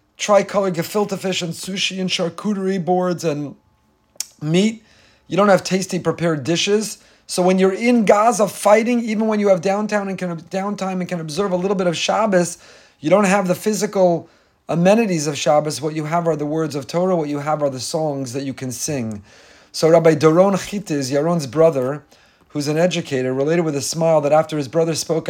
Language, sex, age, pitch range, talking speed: English, male, 40-59, 140-180 Hz, 195 wpm